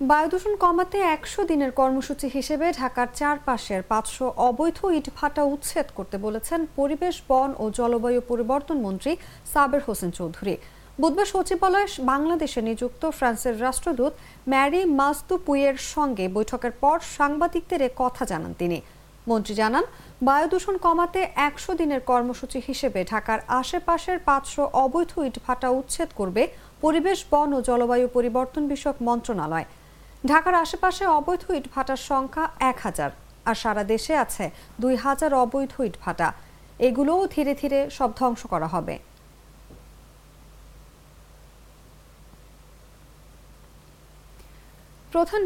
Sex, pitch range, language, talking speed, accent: female, 245-315 Hz, English, 90 wpm, Indian